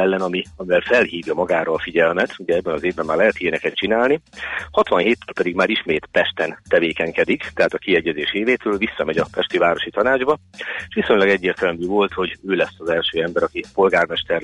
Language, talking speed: Hungarian, 180 wpm